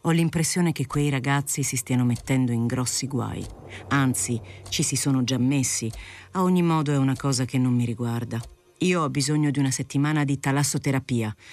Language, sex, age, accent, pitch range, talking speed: Italian, female, 50-69, native, 120-155 Hz, 180 wpm